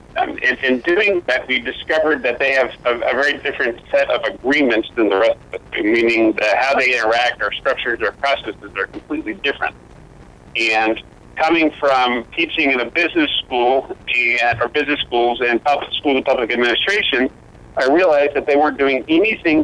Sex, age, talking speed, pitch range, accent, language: male, 40-59, 175 wpm, 120-140 Hz, American, English